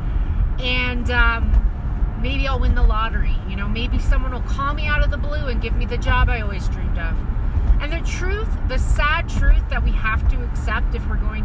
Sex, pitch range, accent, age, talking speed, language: female, 65-75 Hz, American, 30-49, 215 wpm, English